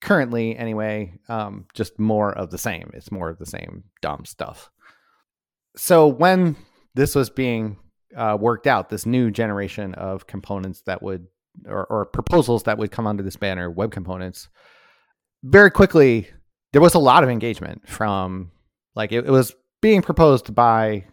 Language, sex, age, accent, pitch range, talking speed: English, male, 30-49, American, 100-125 Hz, 160 wpm